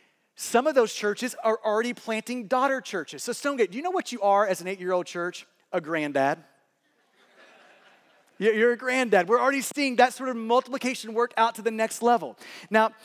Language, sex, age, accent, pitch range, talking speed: English, male, 30-49, American, 190-240 Hz, 185 wpm